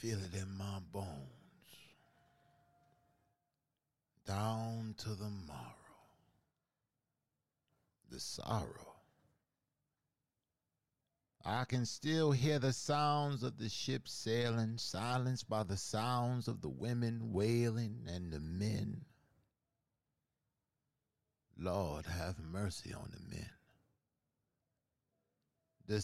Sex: male